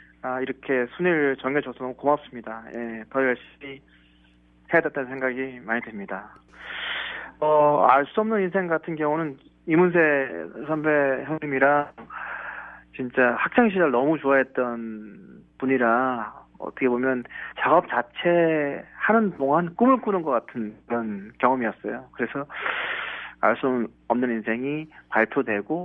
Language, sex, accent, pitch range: Korean, male, native, 115-150 Hz